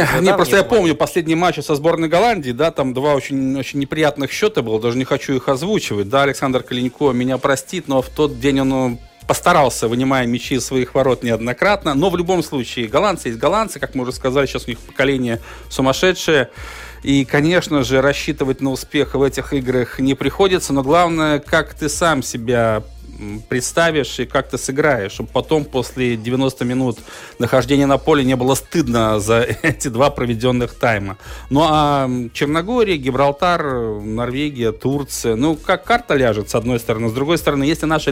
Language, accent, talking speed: Russian, native, 175 wpm